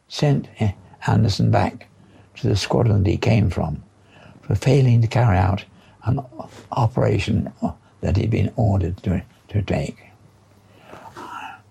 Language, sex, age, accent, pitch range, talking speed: English, male, 60-79, British, 100-135 Hz, 125 wpm